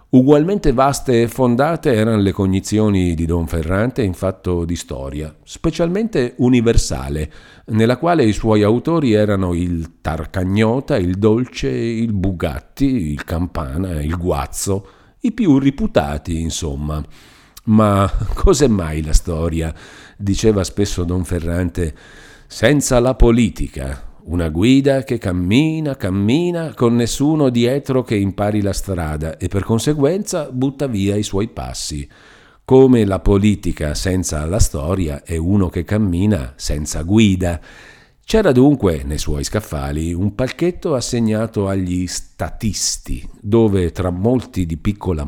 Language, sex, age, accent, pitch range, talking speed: Italian, male, 50-69, native, 85-120 Hz, 125 wpm